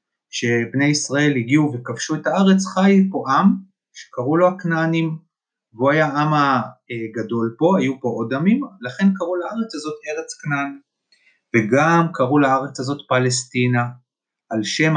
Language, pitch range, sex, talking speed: Hebrew, 125-170 Hz, male, 135 wpm